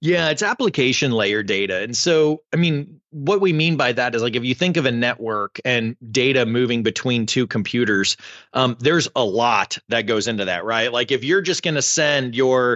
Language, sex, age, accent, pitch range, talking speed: English, male, 30-49, American, 115-145 Hz, 200 wpm